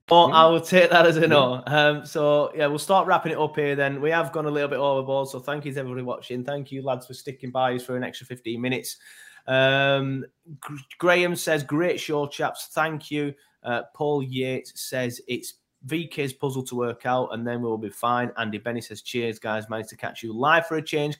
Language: English